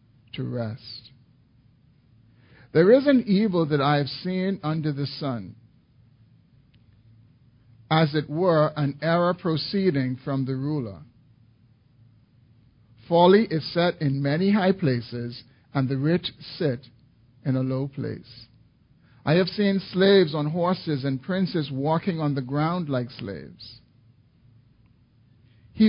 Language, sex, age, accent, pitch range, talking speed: English, male, 50-69, American, 120-155 Hz, 120 wpm